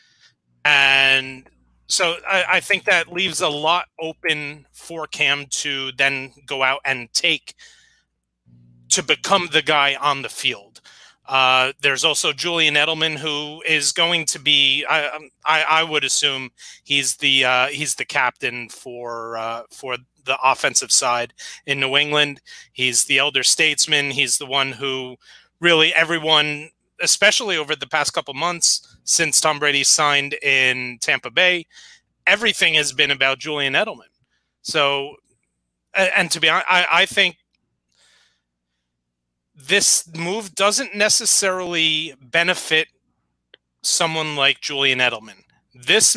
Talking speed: 130 wpm